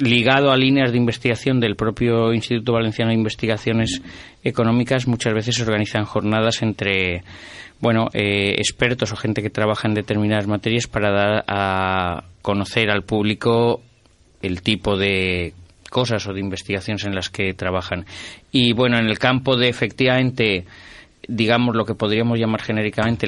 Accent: Spanish